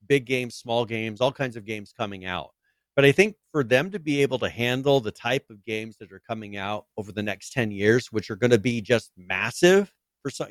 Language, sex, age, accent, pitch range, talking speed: English, male, 40-59, American, 105-130 Hz, 240 wpm